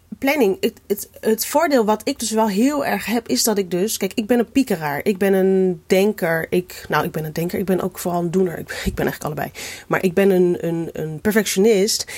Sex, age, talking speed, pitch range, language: female, 30-49, 240 wpm, 175-235 Hz, Dutch